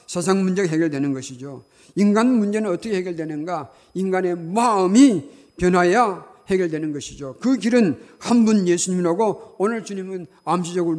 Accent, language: native, Korean